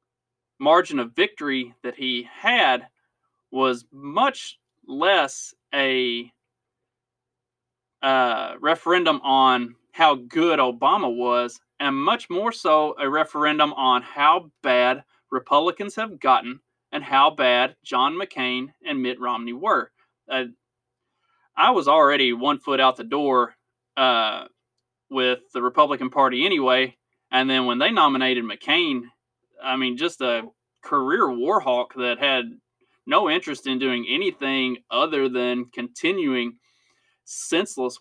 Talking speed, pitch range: 120 wpm, 125-150 Hz